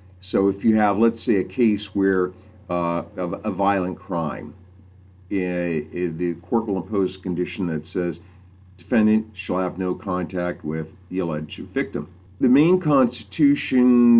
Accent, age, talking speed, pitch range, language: American, 50-69, 150 wpm, 95-110 Hz, English